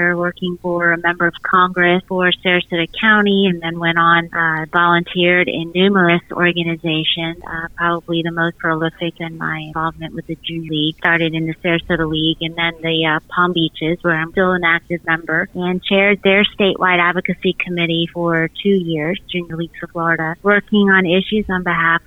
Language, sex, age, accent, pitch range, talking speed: English, female, 30-49, American, 170-190 Hz, 175 wpm